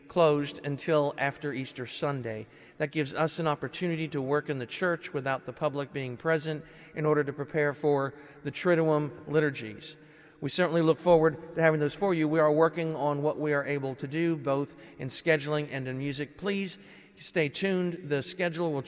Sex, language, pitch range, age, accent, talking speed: male, English, 140-165 Hz, 50-69, American, 190 wpm